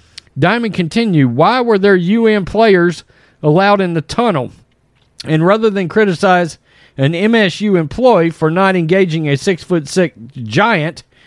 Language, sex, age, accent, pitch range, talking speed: English, male, 40-59, American, 155-205 Hz, 130 wpm